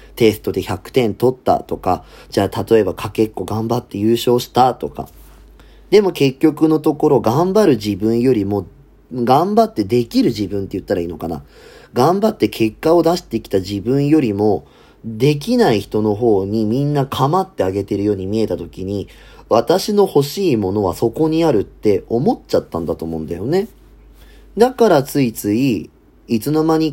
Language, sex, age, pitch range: Japanese, male, 30-49, 100-140 Hz